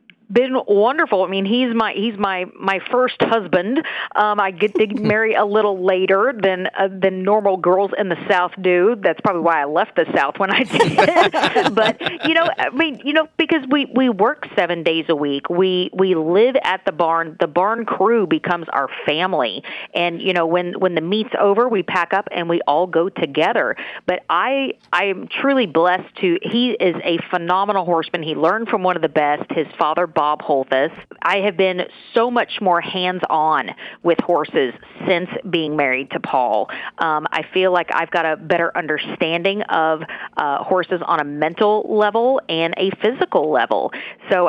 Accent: American